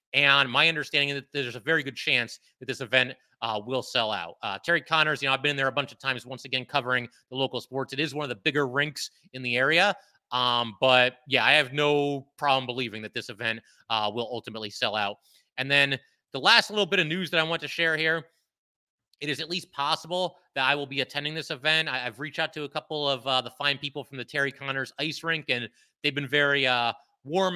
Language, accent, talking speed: English, American, 240 wpm